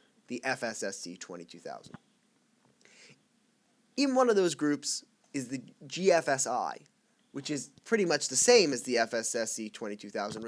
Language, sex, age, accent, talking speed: English, male, 10-29, American, 120 wpm